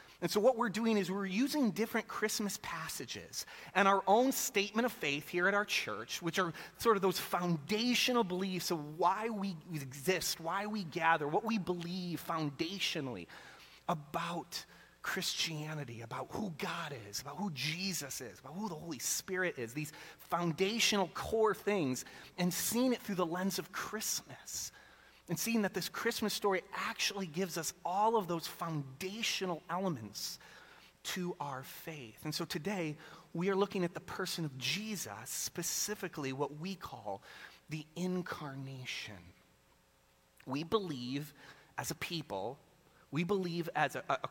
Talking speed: 150 wpm